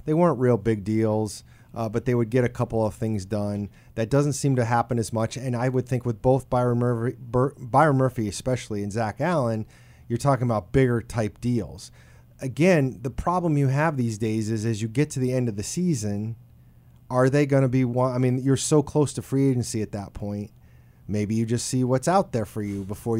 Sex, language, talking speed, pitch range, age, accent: male, English, 225 wpm, 110-130 Hz, 30-49, American